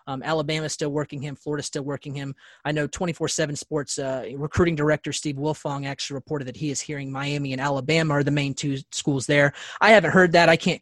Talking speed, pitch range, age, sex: 225 wpm, 140-155 Hz, 30-49, male